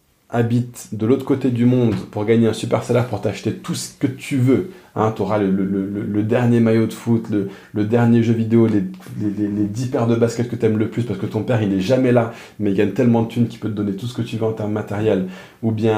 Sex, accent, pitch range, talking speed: male, French, 105-120 Hz, 280 wpm